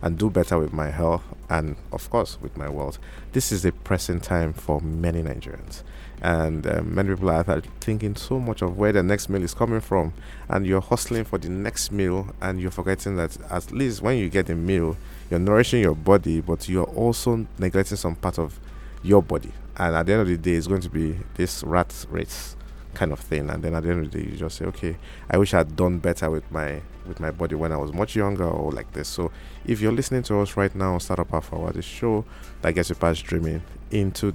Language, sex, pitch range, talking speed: English, male, 80-100 Hz, 230 wpm